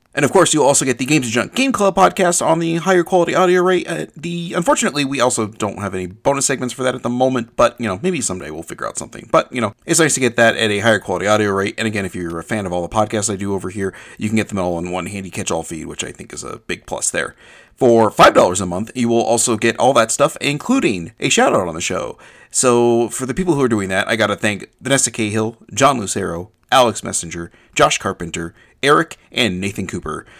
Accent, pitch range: American, 95-125 Hz